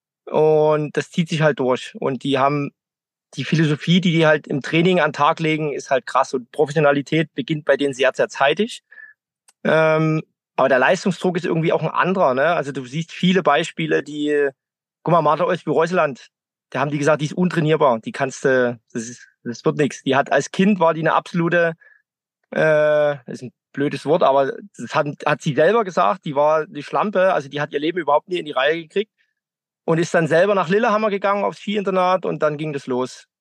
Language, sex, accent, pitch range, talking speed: German, male, German, 145-185 Hz, 205 wpm